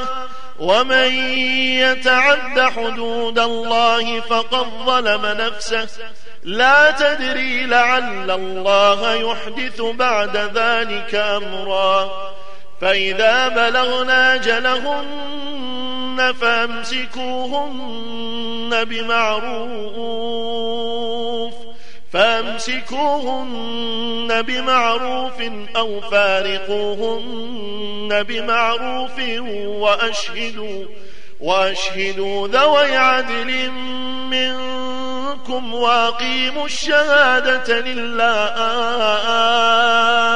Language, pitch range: Arabic, 225-255 Hz